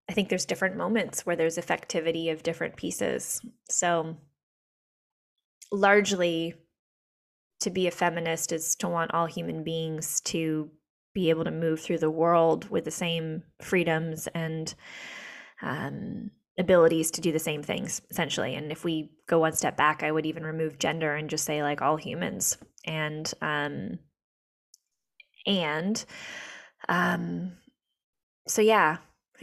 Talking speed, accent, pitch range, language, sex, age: 140 wpm, American, 160-195 Hz, English, female, 20-39